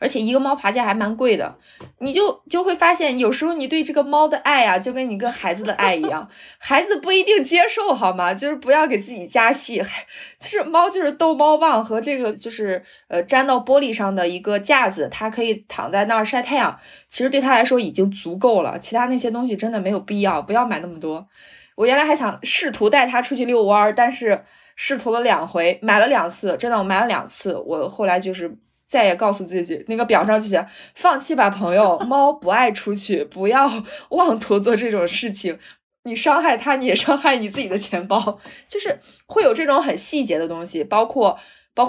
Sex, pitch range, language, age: female, 200-280 Hz, Chinese, 20-39